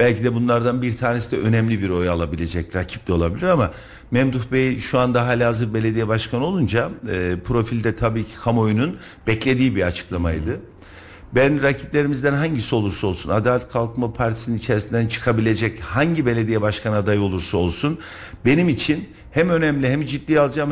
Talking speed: 155 wpm